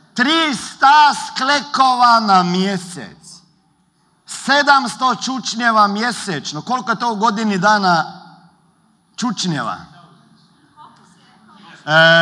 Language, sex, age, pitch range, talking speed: Croatian, male, 50-69, 180-235 Hz, 75 wpm